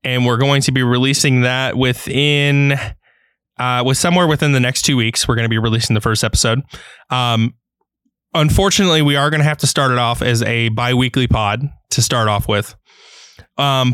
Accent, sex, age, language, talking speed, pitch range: American, male, 20-39, English, 195 wpm, 115-140 Hz